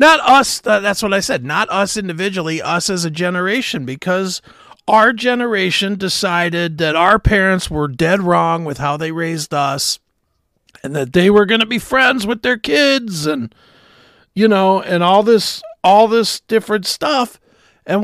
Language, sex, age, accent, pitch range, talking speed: English, male, 50-69, American, 170-225 Hz, 165 wpm